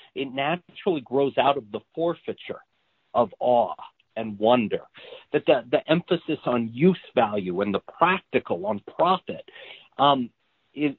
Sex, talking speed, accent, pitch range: male, 135 wpm, American, 135-200 Hz